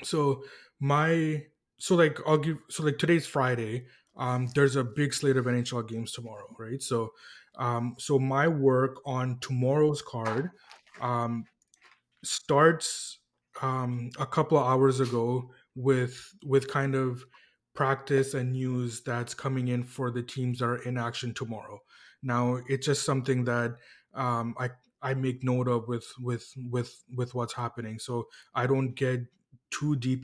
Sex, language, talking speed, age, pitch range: male, English, 155 wpm, 20-39, 120-140 Hz